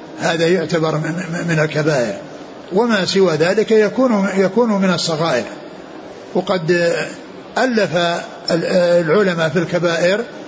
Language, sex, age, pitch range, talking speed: Arabic, male, 60-79, 170-195 Hz, 95 wpm